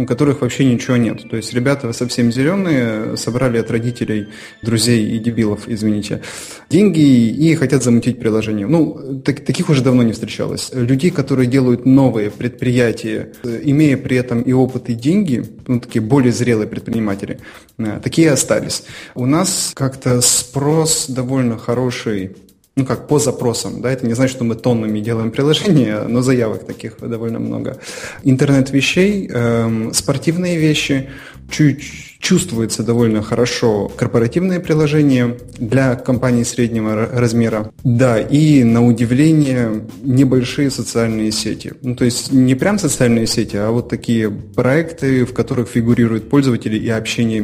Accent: native